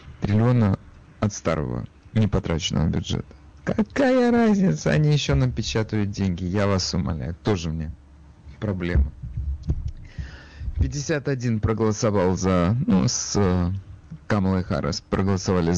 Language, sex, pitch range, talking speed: Russian, male, 90-125 Hz, 95 wpm